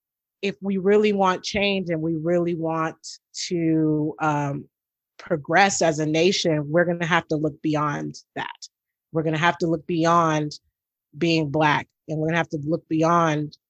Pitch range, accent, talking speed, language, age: 160-200 Hz, American, 160 wpm, English, 30-49